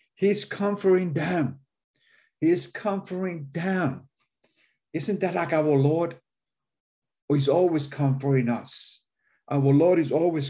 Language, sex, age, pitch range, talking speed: English, male, 50-69, 135-175 Hz, 110 wpm